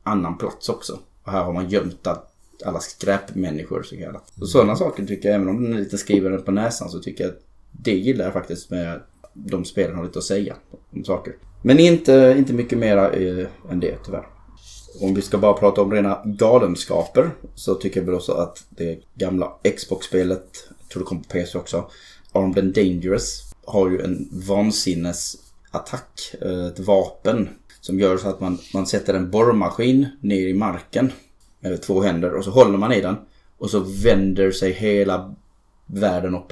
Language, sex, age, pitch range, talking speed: Swedish, male, 20-39, 95-105 Hz, 180 wpm